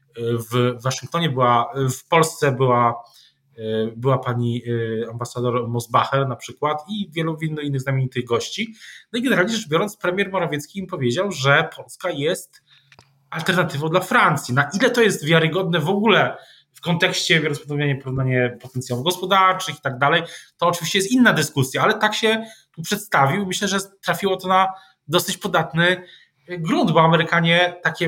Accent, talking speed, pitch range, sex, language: native, 145 wpm, 135-185 Hz, male, Polish